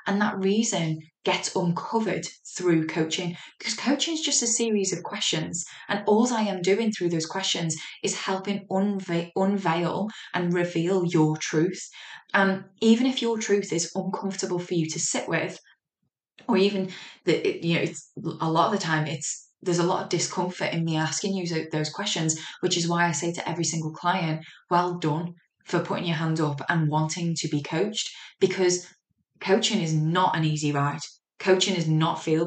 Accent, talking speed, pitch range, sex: British, 180 wpm, 165-195 Hz, female